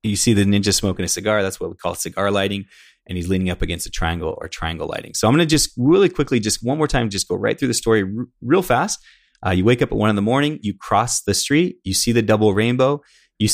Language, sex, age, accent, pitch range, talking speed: English, male, 20-39, American, 95-115 Hz, 275 wpm